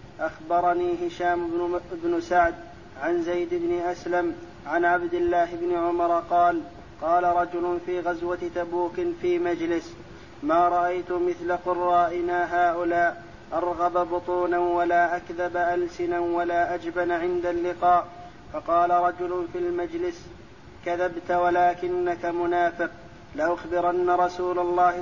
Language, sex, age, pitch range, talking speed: Arabic, male, 30-49, 175-180 Hz, 110 wpm